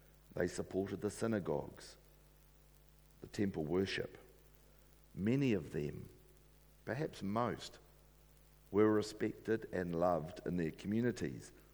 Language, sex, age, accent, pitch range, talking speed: English, male, 50-69, Australian, 90-105 Hz, 95 wpm